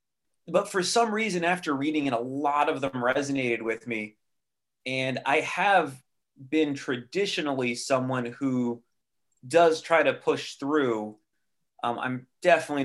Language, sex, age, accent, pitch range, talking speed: English, male, 30-49, American, 115-140 Hz, 135 wpm